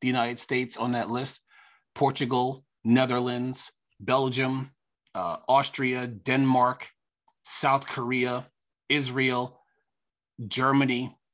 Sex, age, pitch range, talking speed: male, 30-49, 120-140 Hz, 85 wpm